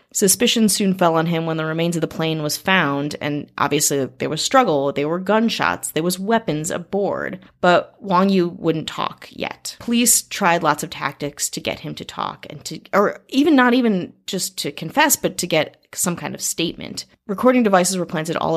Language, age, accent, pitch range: English, 30-49, American, 155-195 Hz